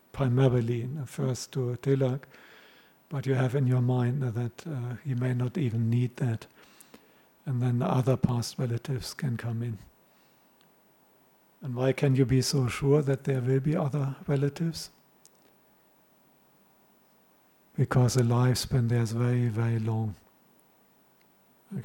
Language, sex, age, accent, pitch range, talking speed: English, male, 50-69, German, 125-135 Hz, 130 wpm